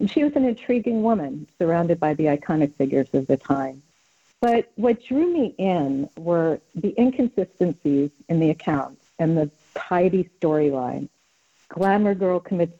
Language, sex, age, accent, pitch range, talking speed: English, female, 50-69, American, 150-210 Hz, 145 wpm